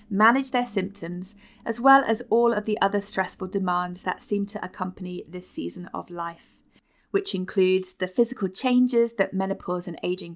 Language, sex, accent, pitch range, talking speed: English, female, British, 185-235 Hz, 170 wpm